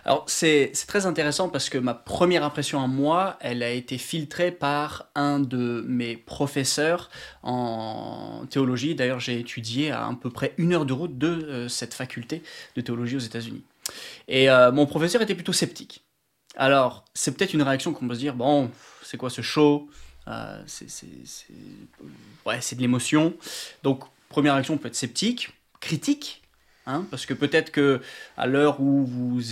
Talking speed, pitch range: 175 wpm, 125-155 Hz